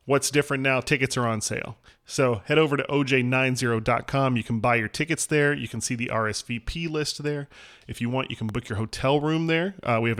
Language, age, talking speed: English, 30-49, 225 wpm